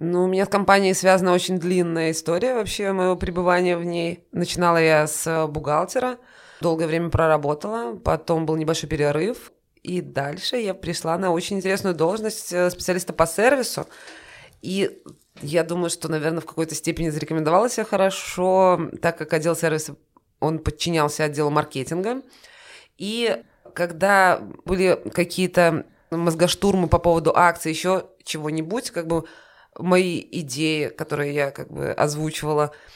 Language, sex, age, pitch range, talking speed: Russian, female, 20-39, 160-195 Hz, 135 wpm